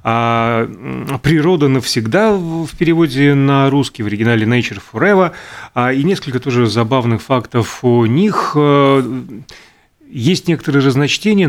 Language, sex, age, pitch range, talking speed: Russian, male, 30-49, 115-150 Hz, 105 wpm